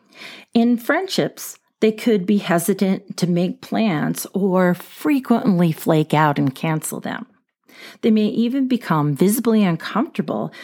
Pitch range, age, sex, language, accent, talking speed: 160-225 Hz, 40-59, female, English, American, 125 wpm